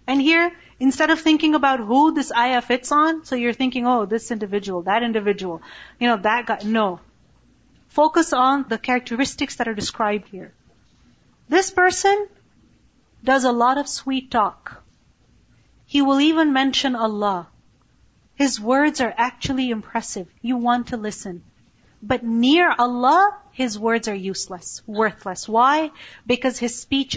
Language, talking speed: English, 145 wpm